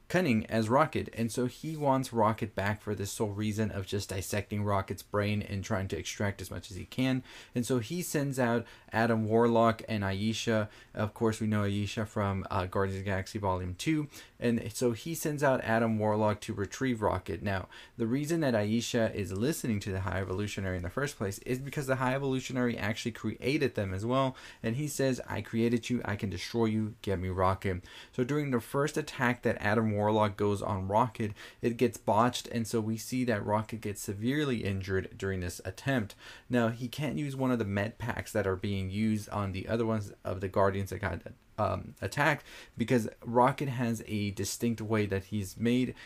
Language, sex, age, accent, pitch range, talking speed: English, male, 20-39, American, 100-120 Hz, 205 wpm